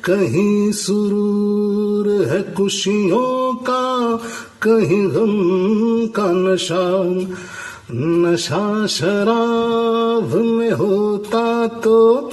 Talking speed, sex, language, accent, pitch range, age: 75 wpm, male, Hindi, native, 185-230 Hz, 50-69